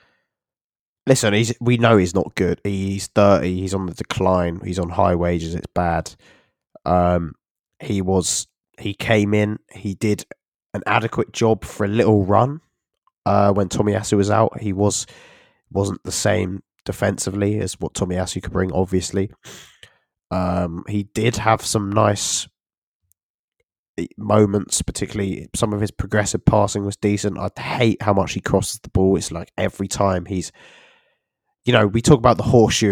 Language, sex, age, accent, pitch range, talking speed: English, male, 20-39, British, 90-110 Hz, 160 wpm